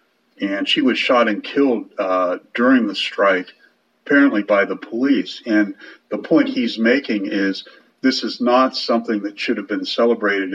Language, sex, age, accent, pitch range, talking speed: English, male, 50-69, American, 105-140 Hz, 165 wpm